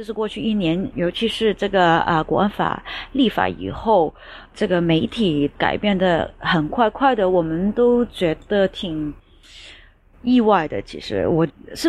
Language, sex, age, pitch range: Chinese, female, 30-49, 170-225 Hz